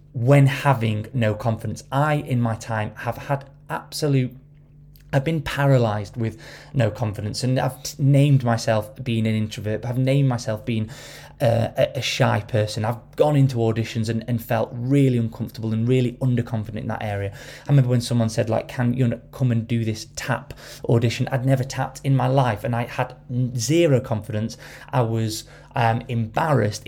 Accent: British